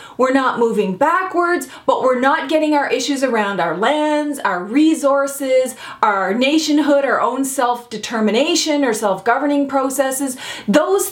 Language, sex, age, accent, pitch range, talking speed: English, female, 30-49, American, 235-315 Hz, 130 wpm